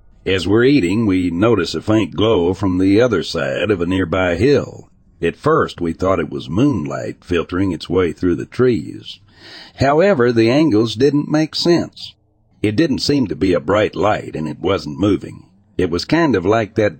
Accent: American